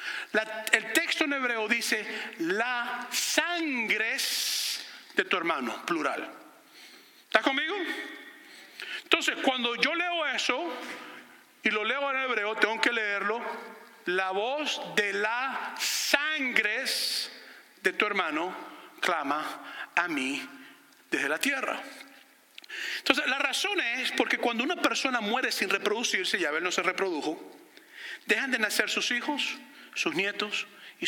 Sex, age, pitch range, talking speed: male, 50-69, 215-310 Hz, 125 wpm